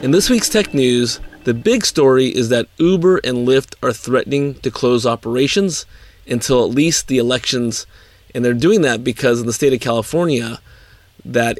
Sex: male